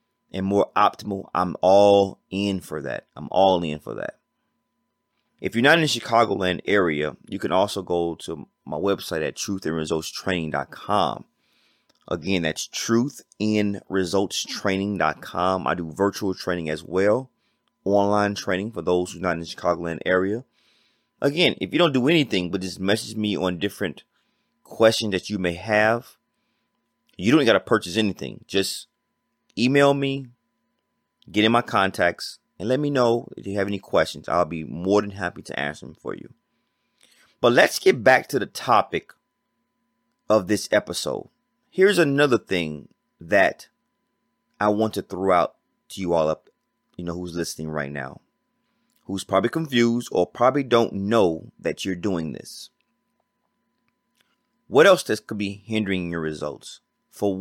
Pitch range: 85-110 Hz